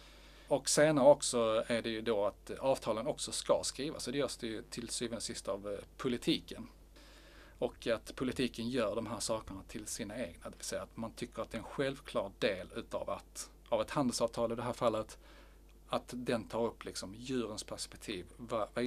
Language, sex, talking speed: Swedish, male, 195 wpm